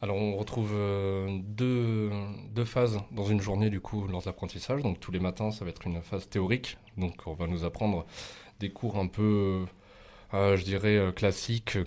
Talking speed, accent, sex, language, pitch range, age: 180 wpm, French, male, French, 90-105 Hz, 20-39